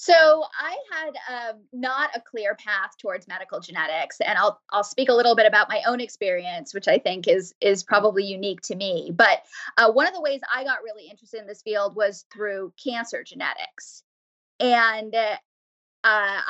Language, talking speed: English, 185 wpm